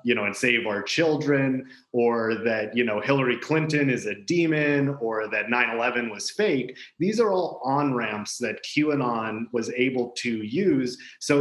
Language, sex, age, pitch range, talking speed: English, male, 30-49, 115-140 Hz, 170 wpm